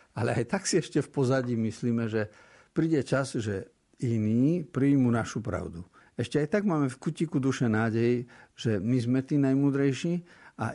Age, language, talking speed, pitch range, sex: 50-69, Slovak, 165 wpm, 100-135 Hz, male